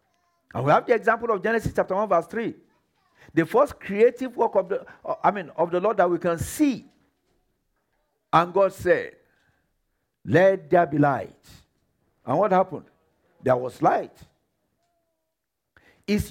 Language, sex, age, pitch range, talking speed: English, male, 50-69, 165-255 Hz, 135 wpm